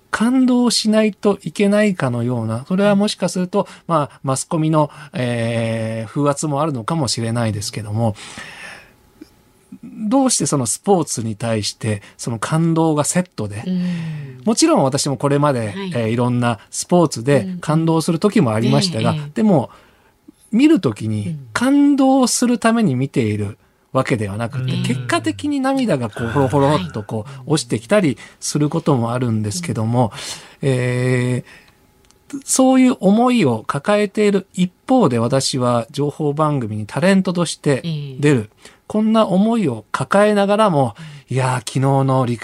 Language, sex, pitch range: Japanese, male, 120-200 Hz